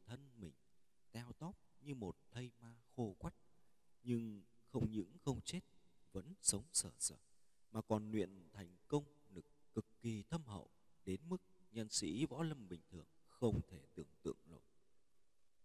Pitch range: 100-130 Hz